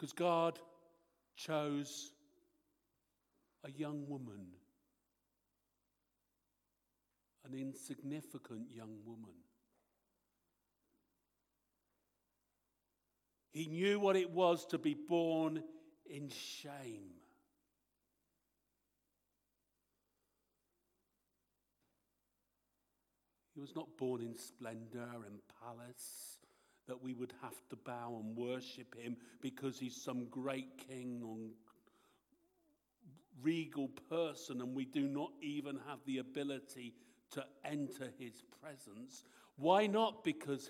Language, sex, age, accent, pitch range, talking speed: English, male, 50-69, British, 125-165 Hz, 90 wpm